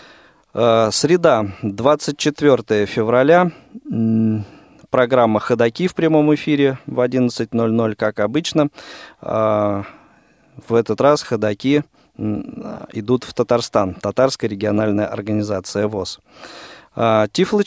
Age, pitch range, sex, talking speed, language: 20-39, 105-140 Hz, male, 80 wpm, Russian